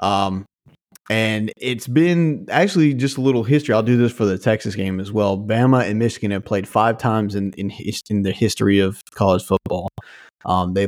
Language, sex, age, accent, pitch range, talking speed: English, male, 30-49, American, 100-135 Hz, 200 wpm